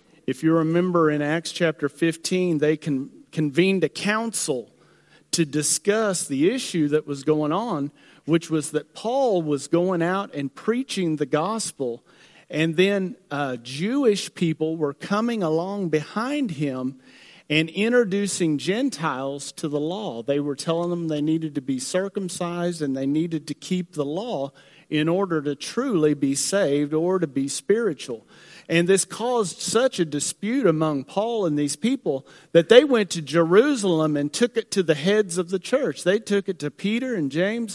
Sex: male